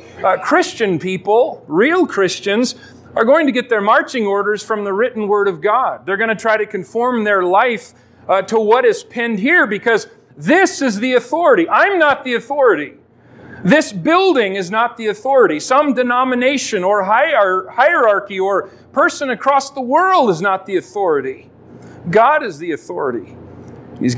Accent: American